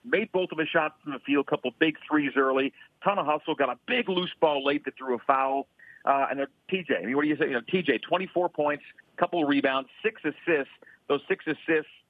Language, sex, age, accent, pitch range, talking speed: English, male, 50-69, American, 130-155 Hz, 235 wpm